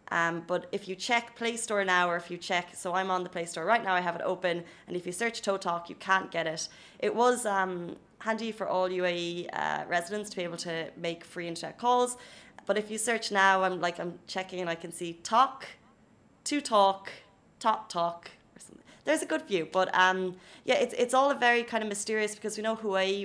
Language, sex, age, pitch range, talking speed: Arabic, female, 20-39, 175-215 Hz, 230 wpm